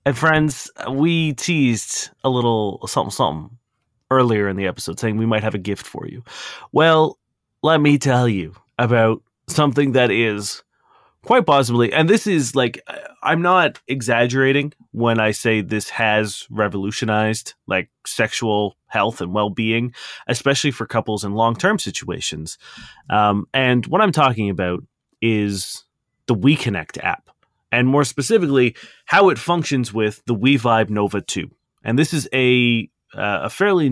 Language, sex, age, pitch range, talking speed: English, male, 30-49, 105-140 Hz, 150 wpm